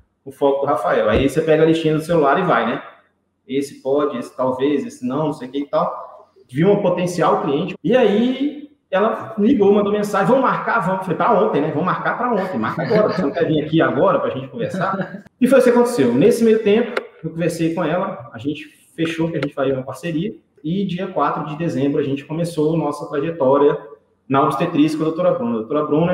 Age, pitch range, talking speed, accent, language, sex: 20-39, 140-185 Hz, 230 wpm, Brazilian, Portuguese, male